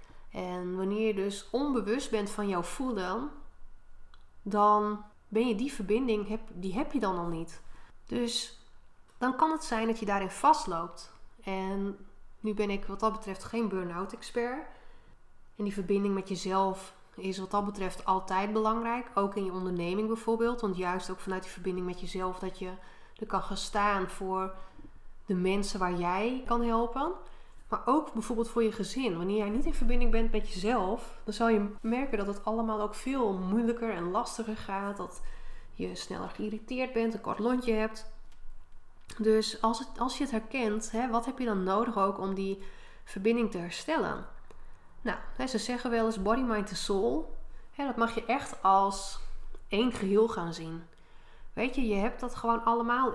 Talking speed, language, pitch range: 175 wpm, Dutch, 190-230 Hz